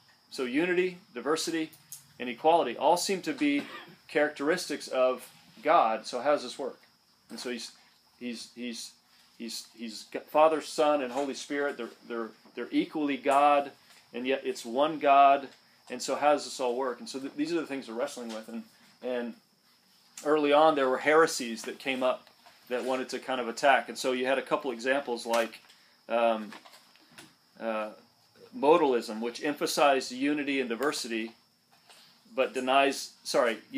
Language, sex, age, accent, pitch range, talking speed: English, male, 40-59, American, 125-160 Hz, 165 wpm